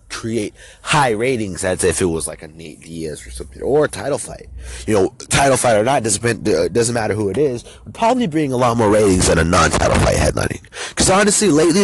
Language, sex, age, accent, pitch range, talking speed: English, male, 30-49, American, 85-120 Hz, 215 wpm